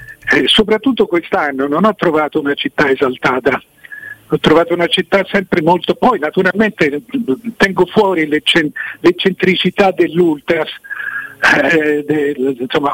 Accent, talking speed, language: native, 110 wpm, Italian